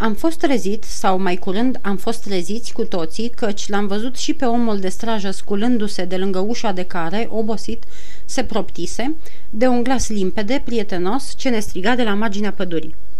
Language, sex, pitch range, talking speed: Romanian, female, 190-245 Hz, 180 wpm